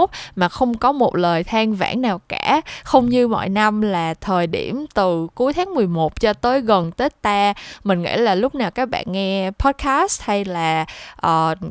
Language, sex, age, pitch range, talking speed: Vietnamese, female, 20-39, 170-235 Hz, 190 wpm